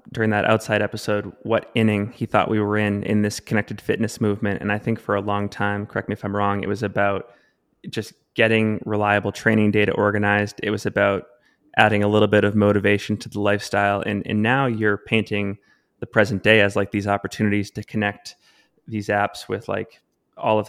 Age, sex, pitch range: 20-39, male, 100-110 Hz